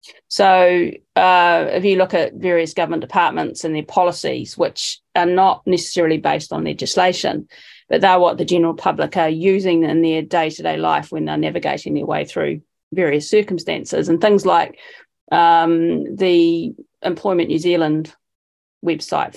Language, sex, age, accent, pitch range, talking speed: English, female, 30-49, Australian, 160-190 Hz, 150 wpm